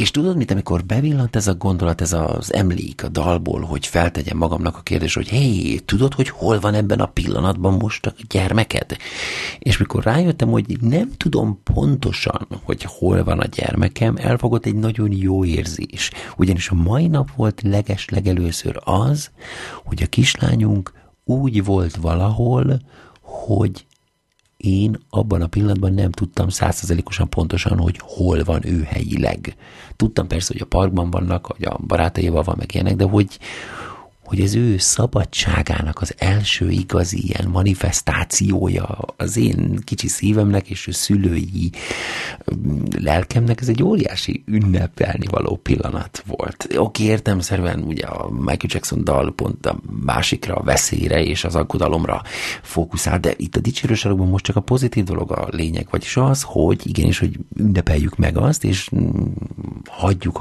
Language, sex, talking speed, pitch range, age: Hungarian, male, 150 wpm, 90-110 Hz, 50-69